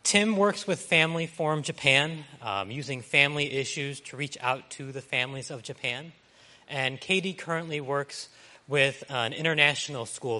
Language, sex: English, male